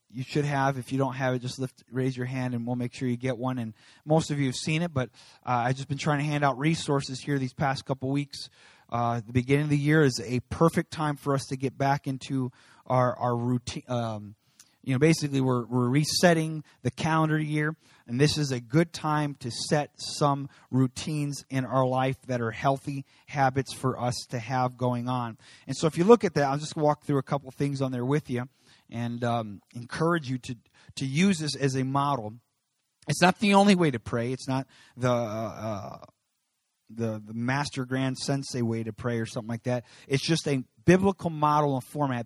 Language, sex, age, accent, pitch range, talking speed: English, male, 30-49, American, 120-150 Hz, 220 wpm